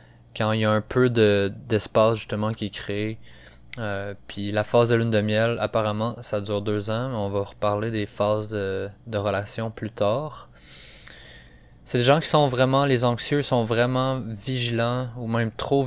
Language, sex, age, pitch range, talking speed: French, male, 20-39, 105-120 Hz, 190 wpm